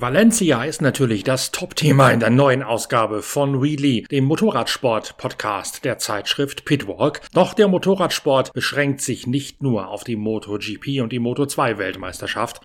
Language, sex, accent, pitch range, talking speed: German, male, German, 120-165 Hz, 140 wpm